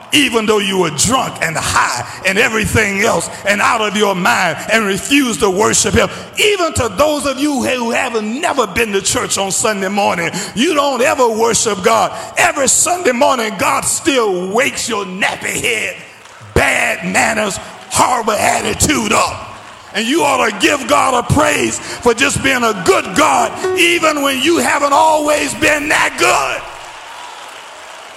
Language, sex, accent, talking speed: English, male, American, 160 wpm